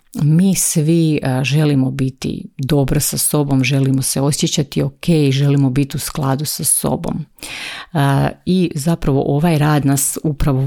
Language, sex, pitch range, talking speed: Croatian, female, 135-155 Hz, 135 wpm